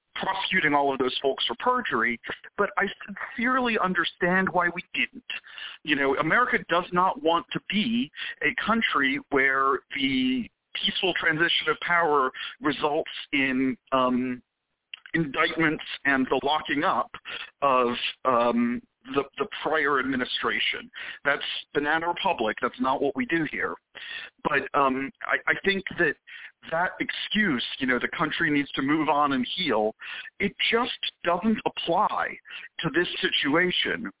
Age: 50-69